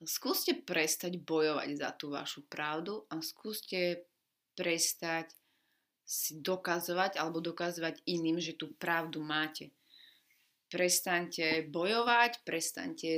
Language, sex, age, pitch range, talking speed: Slovak, female, 30-49, 165-195 Hz, 100 wpm